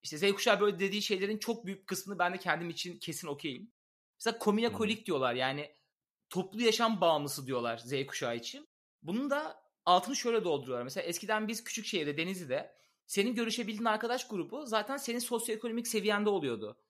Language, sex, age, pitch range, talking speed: Turkish, male, 30-49, 150-220 Hz, 165 wpm